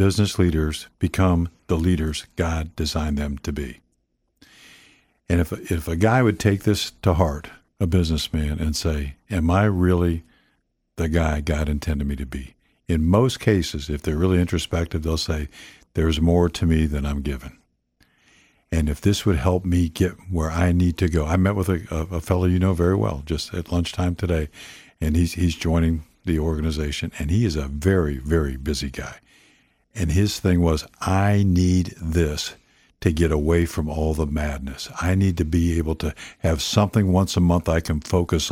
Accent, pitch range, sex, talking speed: American, 80-95 Hz, male, 185 wpm